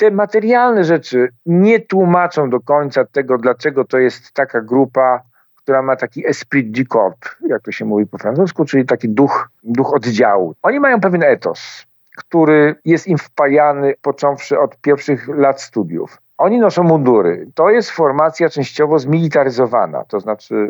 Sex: male